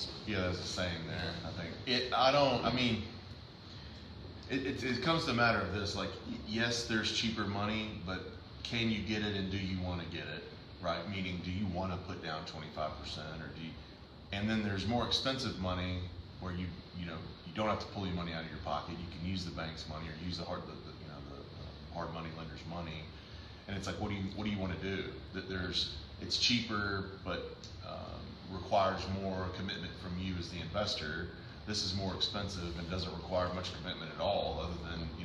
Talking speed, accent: 225 wpm, American